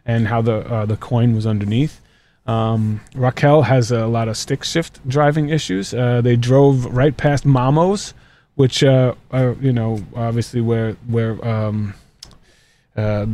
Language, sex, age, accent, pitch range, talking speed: English, male, 30-49, American, 115-140 Hz, 155 wpm